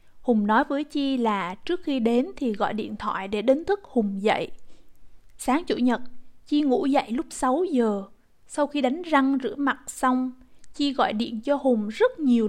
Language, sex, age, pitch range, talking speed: Vietnamese, female, 20-39, 220-275 Hz, 190 wpm